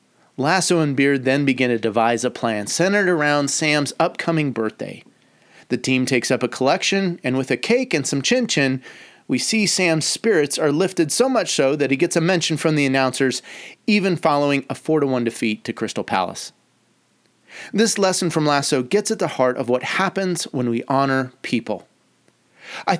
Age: 30-49